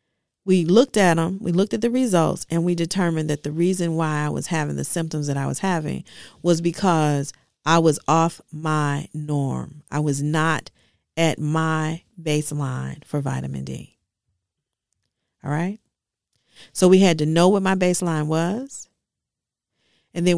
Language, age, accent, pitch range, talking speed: English, 40-59, American, 145-180 Hz, 160 wpm